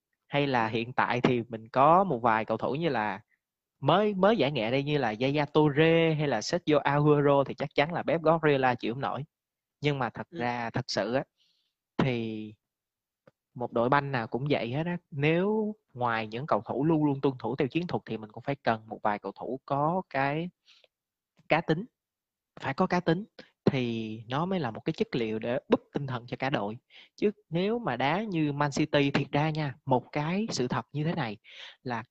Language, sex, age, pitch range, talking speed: Vietnamese, male, 20-39, 125-165 Hz, 210 wpm